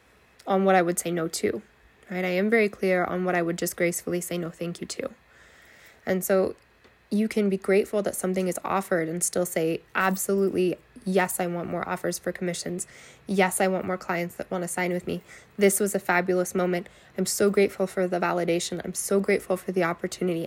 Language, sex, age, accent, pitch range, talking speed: English, female, 20-39, American, 180-205 Hz, 210 wpm